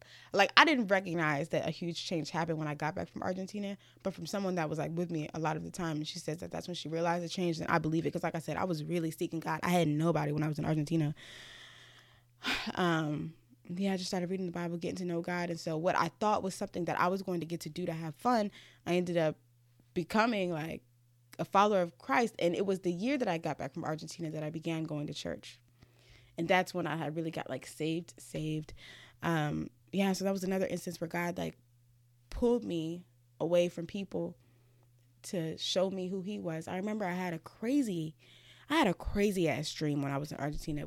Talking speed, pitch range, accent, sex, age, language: 240 wpm, 150-180 Hz, American, female, 20-39, English